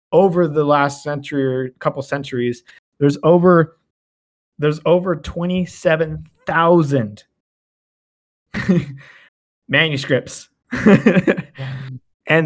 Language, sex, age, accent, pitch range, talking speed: English, male, 20-39, American, 130-170 Hz, 65 wpm